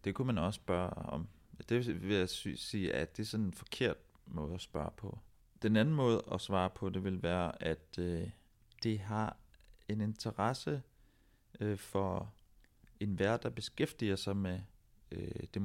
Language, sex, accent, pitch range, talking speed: Danish, male, native, 85-110 Hz, 160 wpm